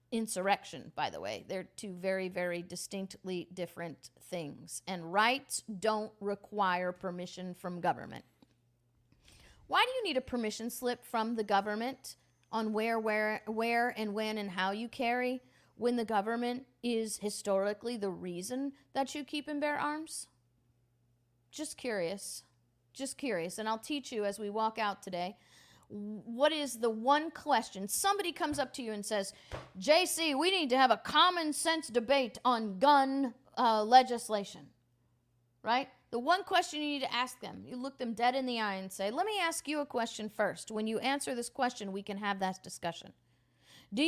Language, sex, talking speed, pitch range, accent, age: English, female, 170 wpm, 190-270 Hz, American, 40-59